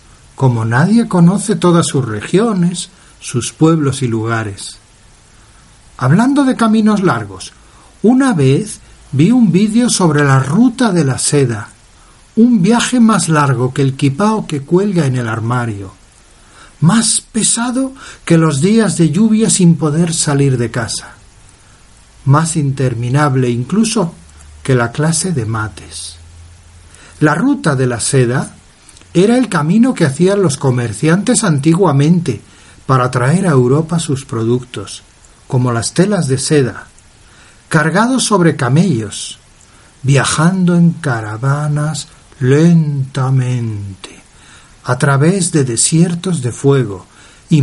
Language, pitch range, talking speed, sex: Spanish, 120-180 Hz, 120 wpm, male